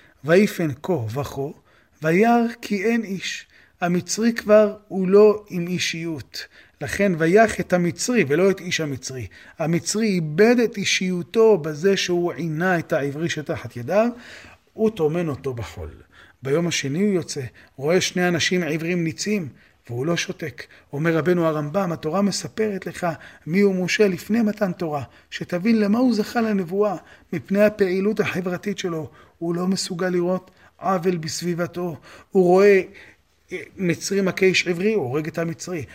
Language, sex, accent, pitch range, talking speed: Hebrew, male, native, 165-205 Hz, 140 wpm